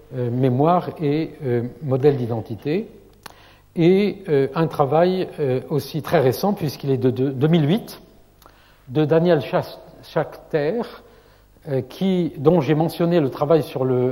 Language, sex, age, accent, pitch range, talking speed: French, male, 60-79, French, 130-175 Hz, 130 wpm